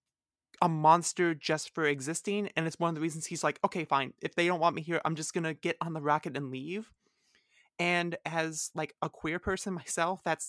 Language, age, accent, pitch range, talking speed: English, 20-39, American, 150-180 Hz, 225 wpm